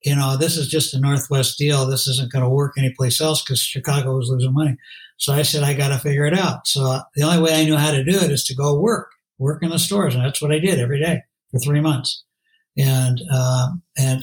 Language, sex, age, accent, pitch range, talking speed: English, male, 60-79, American, 140-170 Hz, 255 wpm